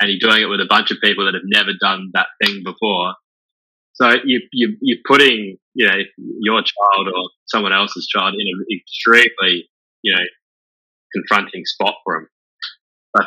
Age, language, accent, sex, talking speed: 20-39, English, Australian, male, 175 wpm